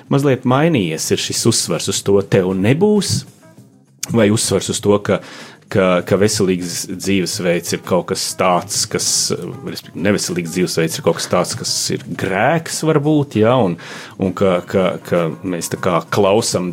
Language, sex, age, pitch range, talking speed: English, male, 30-49, 100-135 Hz, 155 wpm